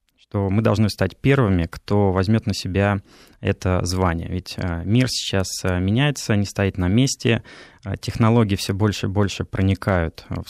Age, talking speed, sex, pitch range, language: 20-39, 150 wpm, male, 95-115 Hz, Russian